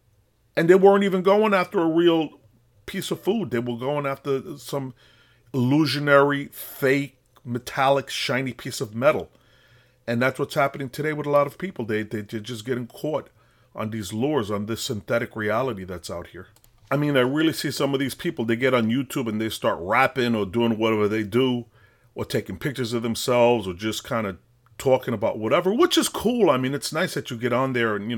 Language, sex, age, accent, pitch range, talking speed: English, male, 40-59, American, 110-135 Hz, 205 wpm